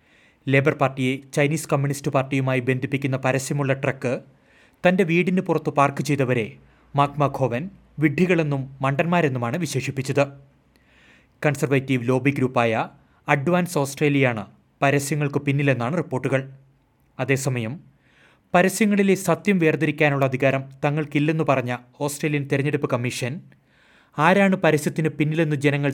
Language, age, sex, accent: Malayalam, 30-49, male, native